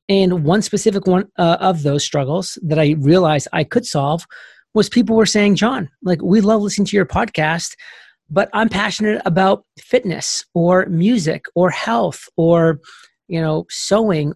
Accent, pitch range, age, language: American, 150-190 Hz, 30-49, English